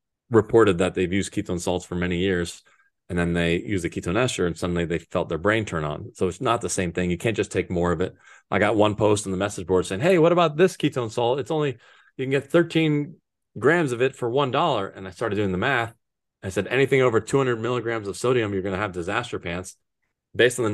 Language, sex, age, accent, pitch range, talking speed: English, male, 30-49, American, 95-120 Hz, 250 wpm